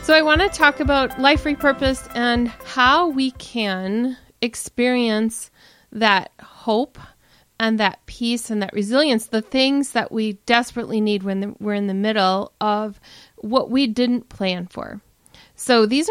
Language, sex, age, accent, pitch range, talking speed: English, female, 30-49, American, 205-250 Hz, 150 wpm